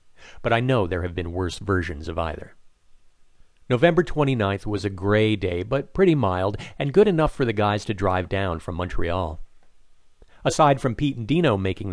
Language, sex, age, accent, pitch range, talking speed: English, male, 50-69, American, 95-120 Hz, 180 wpm